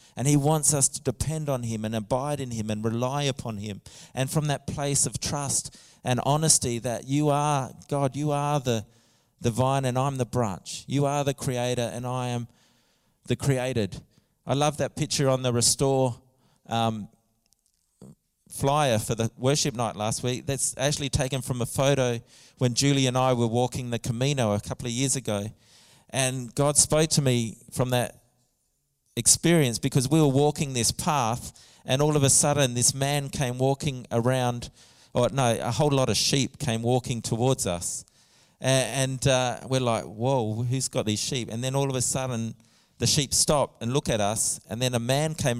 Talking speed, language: 185 wpm, English